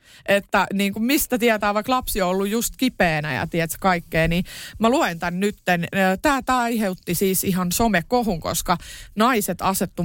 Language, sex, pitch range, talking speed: Finnish, female, 175-235 Hz, 165 wpm